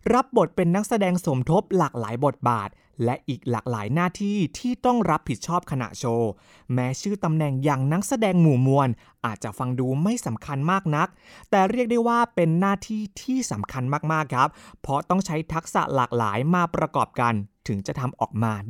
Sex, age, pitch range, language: male, 20-39, 120-170 Hz, Thai